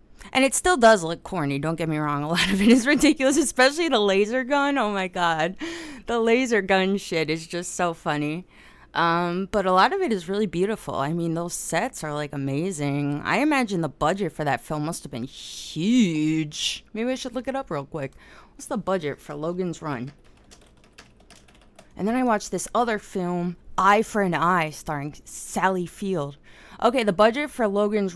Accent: American